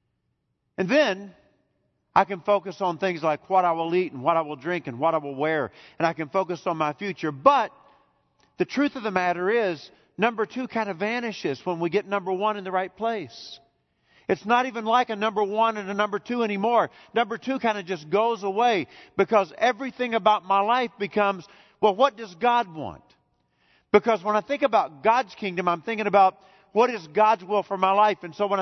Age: 40-59